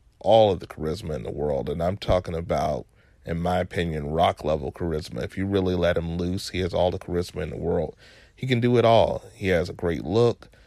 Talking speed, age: 225 wpm, 30-49